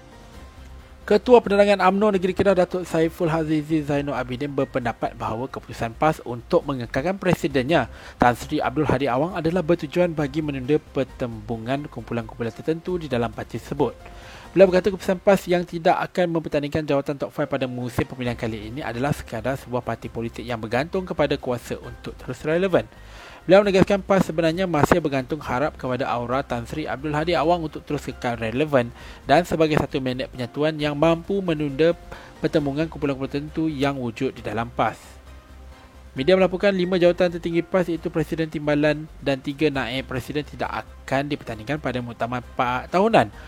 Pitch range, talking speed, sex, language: 120-165 Hz, 155 wpm, male, Malay